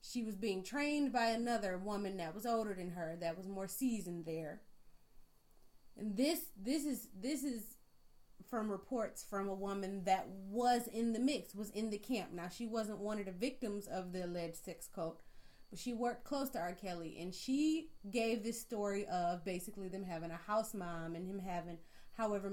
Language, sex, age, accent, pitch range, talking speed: English, female, 30-49, American, 180-230 Hz, 190 wpm